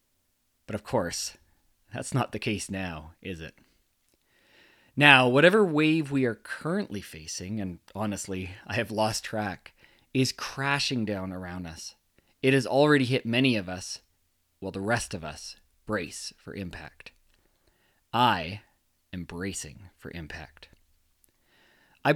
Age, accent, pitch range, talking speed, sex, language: 30-49, American, 95-130 Hz, 135 wpm, male, English